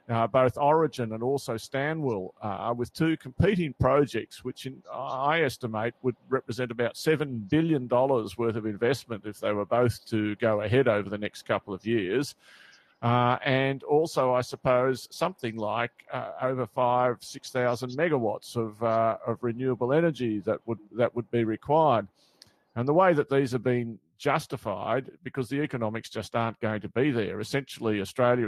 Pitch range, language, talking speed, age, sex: 110-135 Hz, English, 165 wpm, 50-69, male